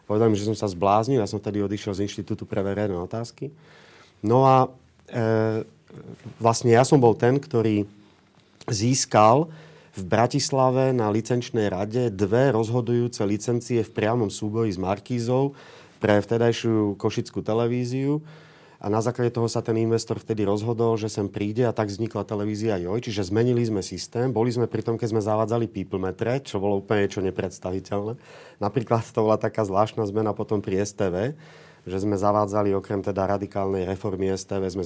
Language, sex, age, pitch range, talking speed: Slovak, male, 30-49, 100-120 Hz, 160 wpm